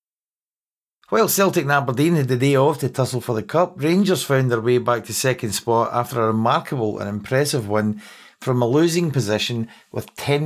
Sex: male